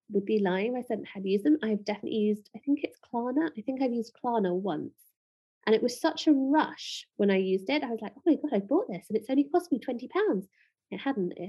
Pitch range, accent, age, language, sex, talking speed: 195-255 Hz, British, 30-49, English, female, 260 wpm